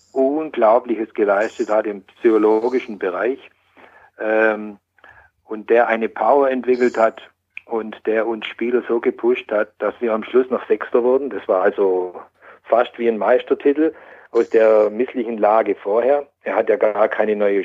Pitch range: 110-145 Hz